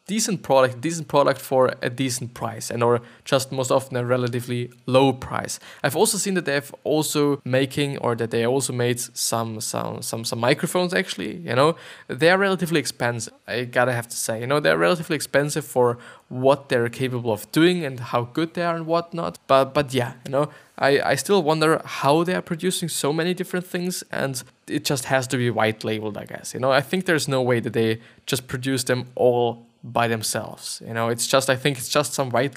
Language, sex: English, male